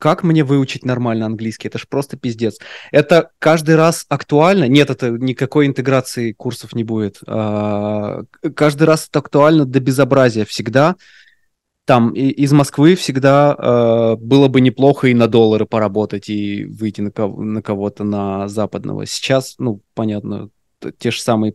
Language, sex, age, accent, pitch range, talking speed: Russian, male, 20-39, native, 115-145 Hz, 150 wpm